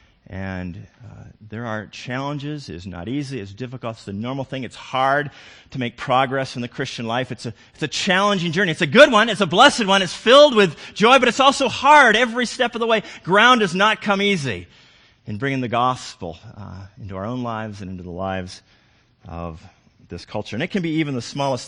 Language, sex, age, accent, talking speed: English, male, 40-59, American, 215 wpm